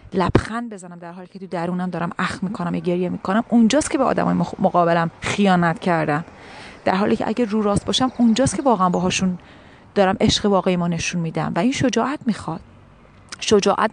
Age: 30-49